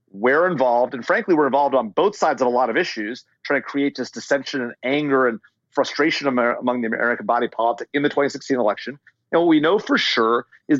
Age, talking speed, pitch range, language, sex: 40-59, 215 wpm, 130-160 Hz, English, male